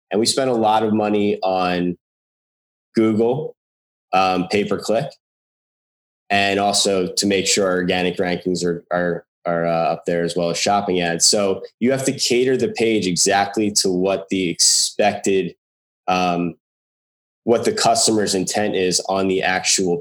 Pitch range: 90-110 Hz